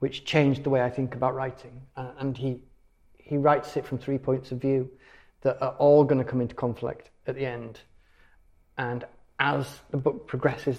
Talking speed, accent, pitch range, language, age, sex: 190 wpm, British, 125-145 Hz, English, 40-59, male